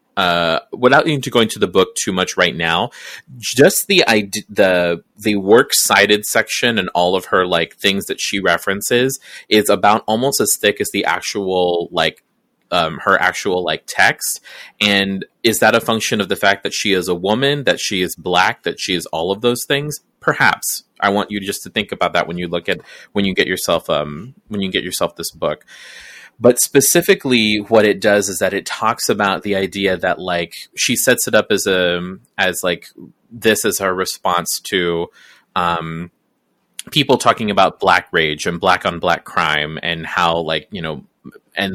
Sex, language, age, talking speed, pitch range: male, English, 30-49, 190 wpm, 85-110 Hz